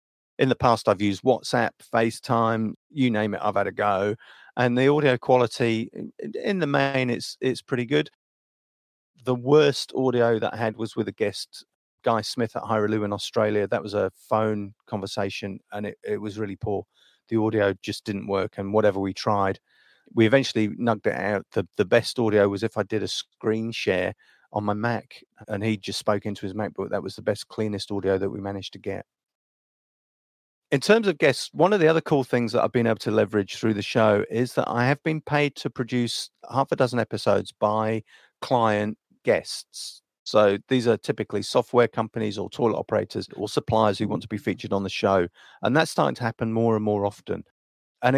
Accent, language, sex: British, English, male